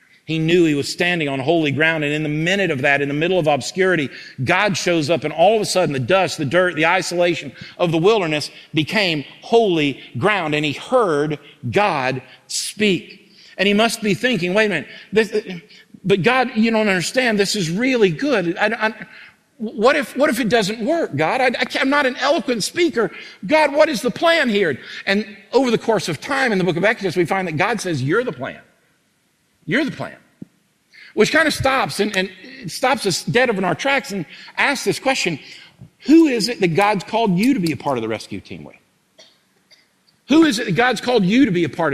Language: English